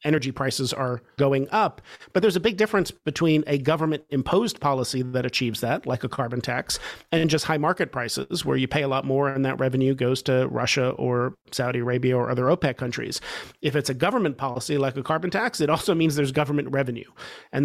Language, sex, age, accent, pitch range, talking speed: English, male, 40-59, American, 130-150 Hz, 205 wpm